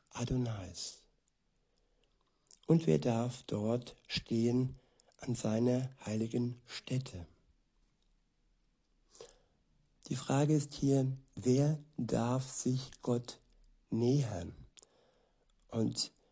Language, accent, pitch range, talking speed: German, German, 115-140 Hz, 75 wpm